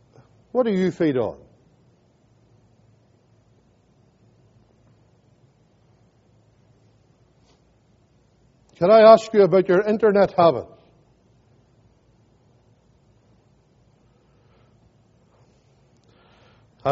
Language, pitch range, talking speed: English, 125-200 Hz, 45 wpm